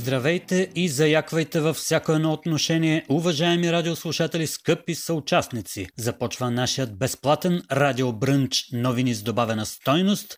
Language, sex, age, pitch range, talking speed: Bulgarian, male, 30-49, 130-170 Hz, 110 wpm